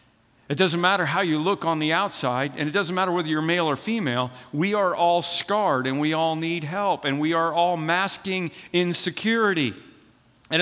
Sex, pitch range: male, 185-260 Hz